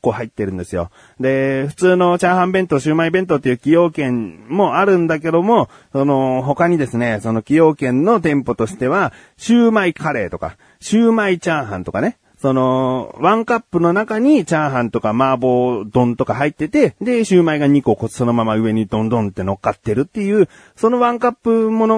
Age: 40-59